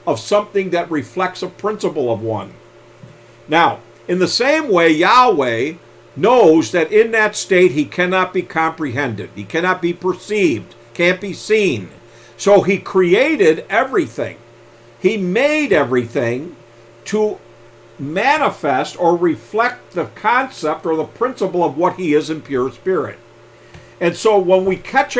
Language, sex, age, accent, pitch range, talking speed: English, male, 50-69, American, 130-190 Hz, 140 wpm